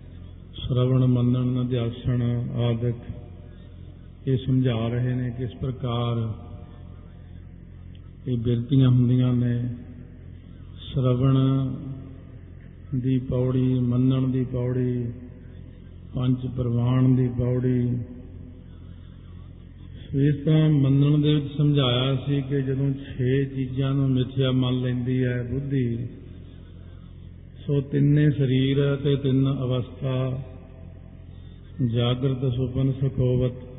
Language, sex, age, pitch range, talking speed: Punjabi, male, 50-69, 95-135 Hz, 90 wpm